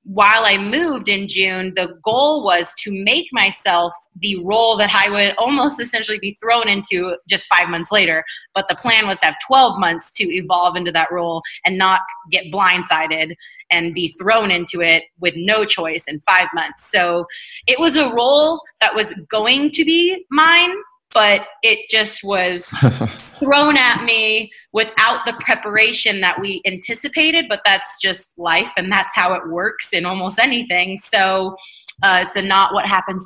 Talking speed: 170 wpm